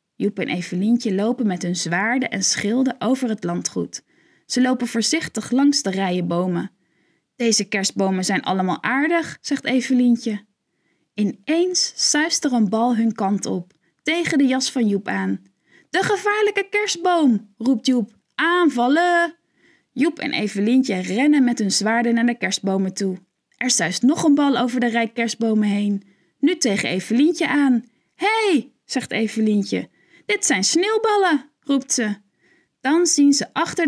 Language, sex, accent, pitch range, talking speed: Dutch, female, Dutch, 200-285 Hz, 150 wpm